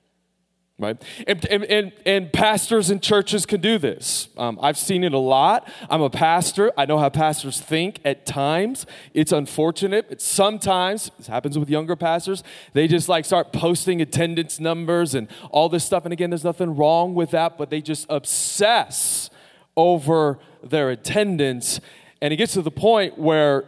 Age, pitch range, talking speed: 20-39, 135-175 Hz, 160 wpm